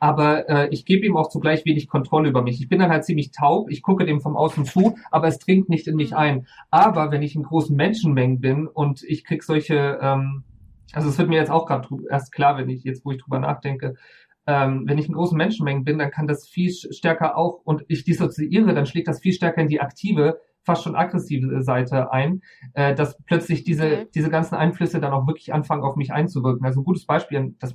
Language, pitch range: German, 135-160 Hz